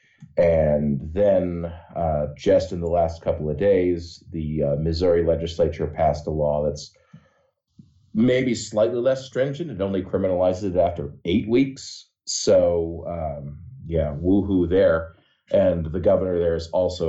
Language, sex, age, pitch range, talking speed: English, male, 40-59, 80-95 Hz, 140 wpm